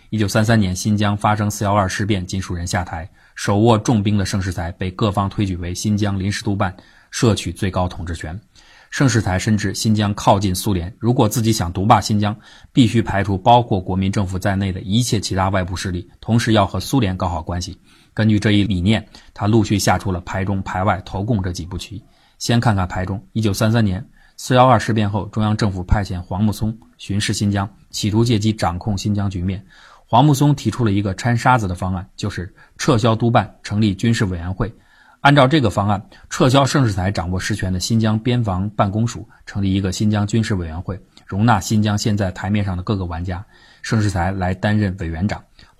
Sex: male